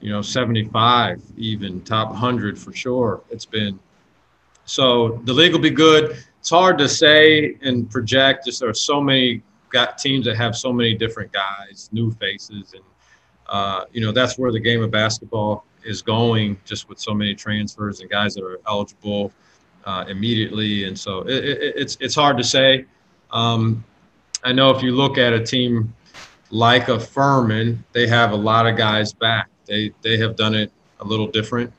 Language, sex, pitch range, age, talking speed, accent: English, male, 105-130 Hz, 30-49, 180 wpm, American